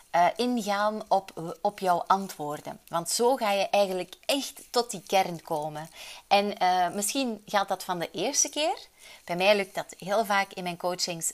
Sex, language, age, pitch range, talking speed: female, Dutch, 30-49, 165-210 Hz, 180 wpm